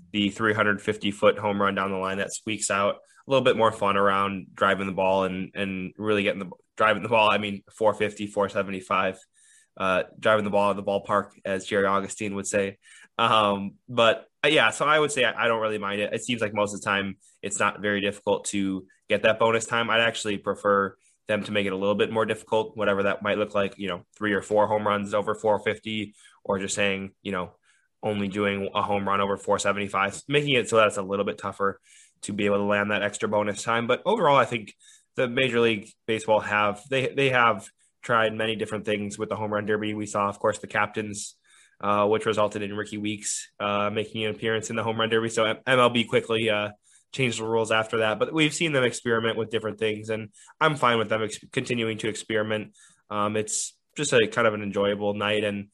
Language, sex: English, male